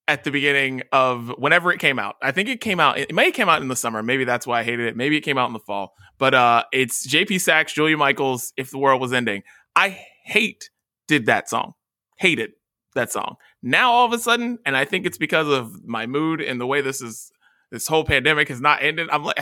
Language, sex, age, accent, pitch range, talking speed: English, male, 20-39, American, 120-155 Hz, 240 wpm